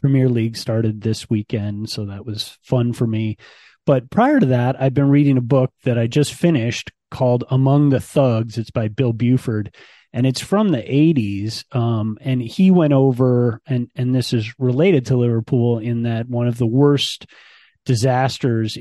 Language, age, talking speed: English, 30-49, 180 wpm